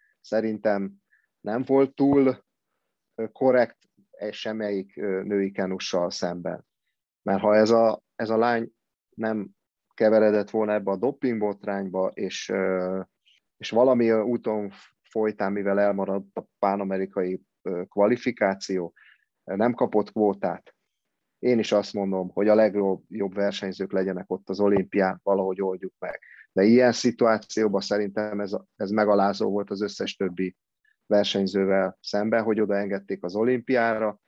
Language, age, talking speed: Hungarian, 30-49, 115 wpm